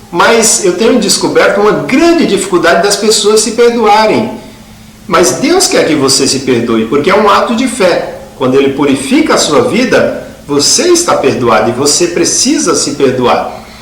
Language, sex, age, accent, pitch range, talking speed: Portuguese, male, 50-69, Brazilian, 150-215 Hz, 165 wpm